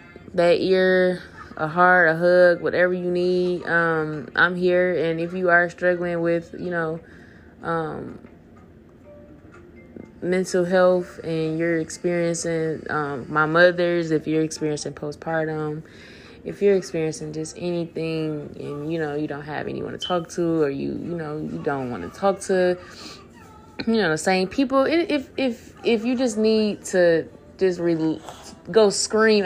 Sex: female